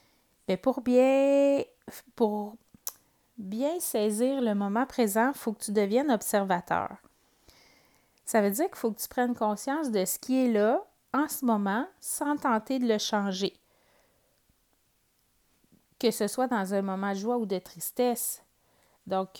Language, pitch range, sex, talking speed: French, 195-240 Hz, female, 150 wpm